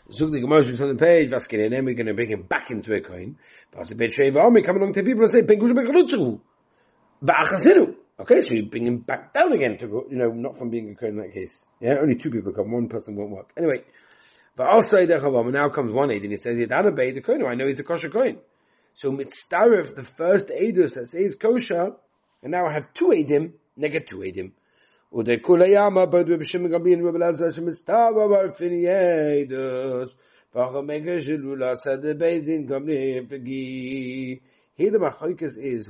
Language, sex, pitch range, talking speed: English, male, 125-175 Hz, 160 wpm